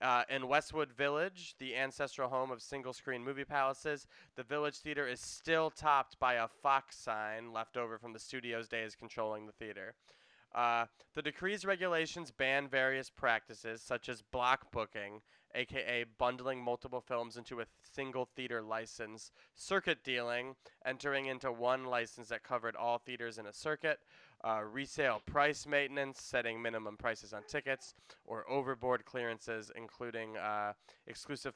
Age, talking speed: 20-39, 150 wpm